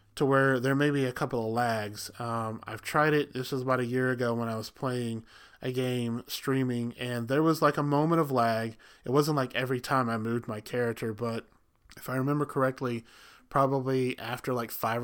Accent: American